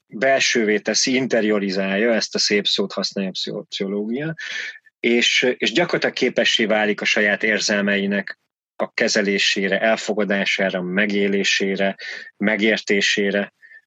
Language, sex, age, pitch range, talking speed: Hungarian, male, 30-49, 105-120 Hz, 100 wpm